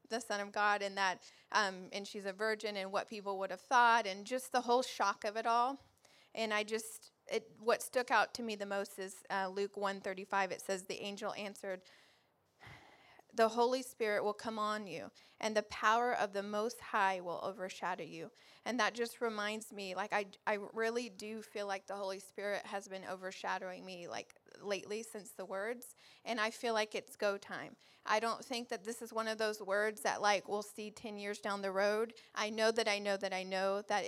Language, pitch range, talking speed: English, 200-225 Hz, 215 wpm